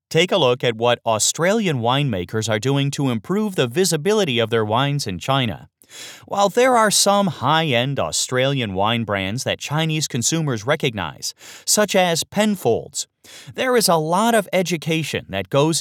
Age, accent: 30-49, American